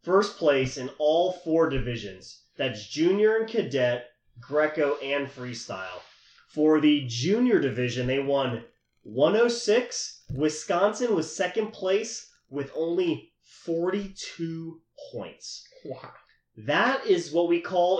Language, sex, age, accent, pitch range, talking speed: English, male, 30-49, American, 140-185 Hz, 115 wpm